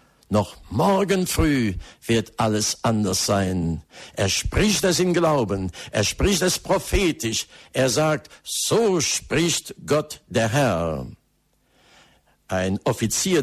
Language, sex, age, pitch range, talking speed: German, male, 60-79, 100-155 Hz, 110 wpm